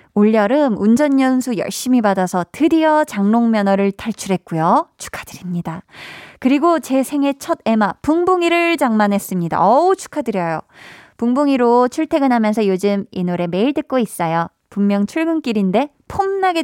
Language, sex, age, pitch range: Korean, female, 20-39, 195-280 Hz